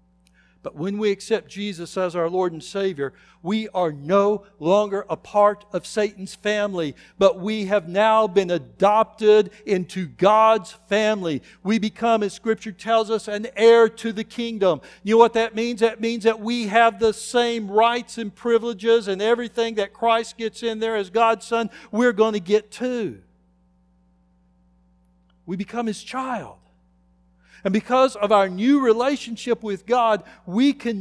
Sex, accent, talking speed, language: male, American, 160 wpm, English